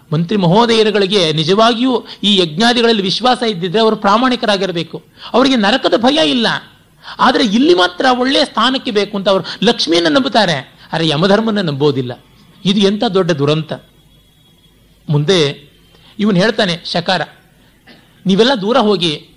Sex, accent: male, native